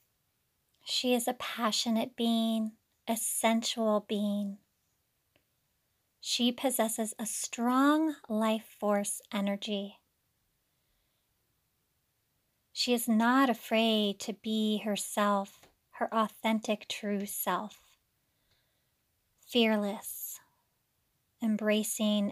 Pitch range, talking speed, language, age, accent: 205-230 Hz, 75 wpm, English, 30-49, American